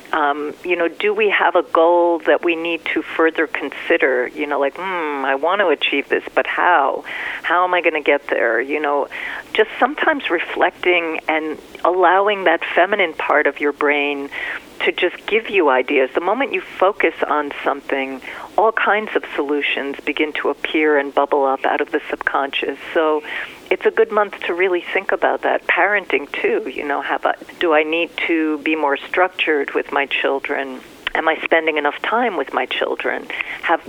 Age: 50-69